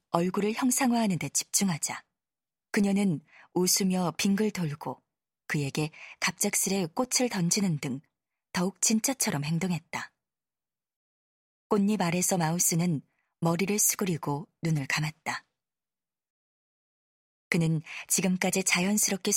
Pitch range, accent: 160-205 Hz, native